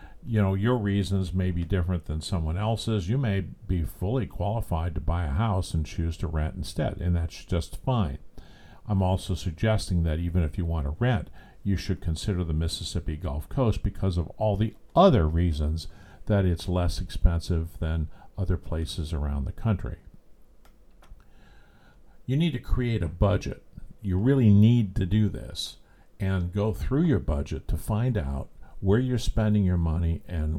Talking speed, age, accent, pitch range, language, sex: 170 wpm, 50-69, American, 85-105 Hz, English, male